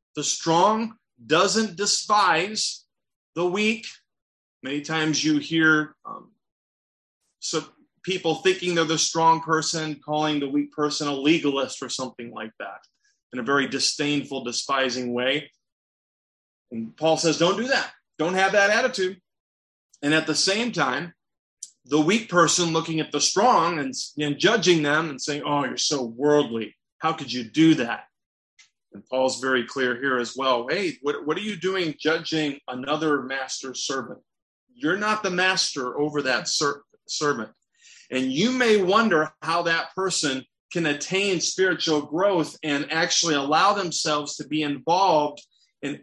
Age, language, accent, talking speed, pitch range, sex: 30-49, English, American, 150 wpm, 140-185 Hz, male